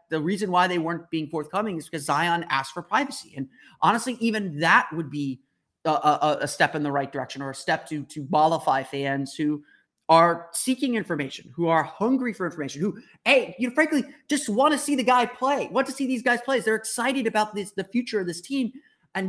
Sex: male